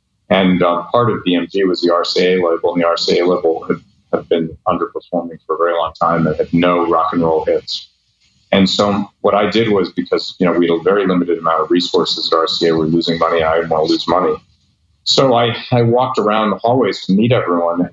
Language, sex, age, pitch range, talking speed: English, male, 40-59, 85-110 Hz, 230 wpm